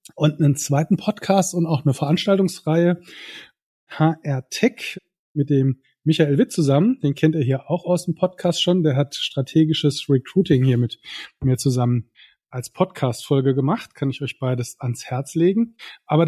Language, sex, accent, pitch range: German, male, German, 140-180 Hz